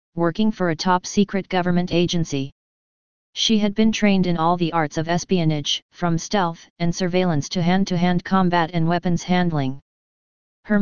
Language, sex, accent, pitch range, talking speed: English, female, American, 165-190 Hz, 155 wpm